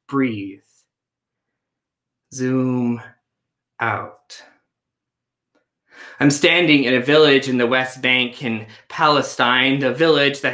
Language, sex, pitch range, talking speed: English, male, 130-165 Hz, 95 wpm